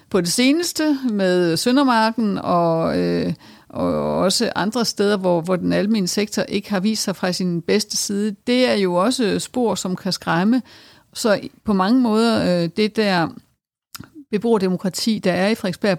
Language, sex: Danish, female